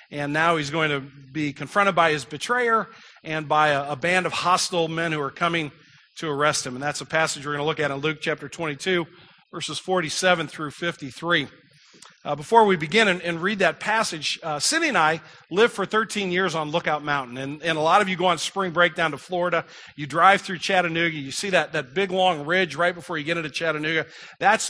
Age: 40-59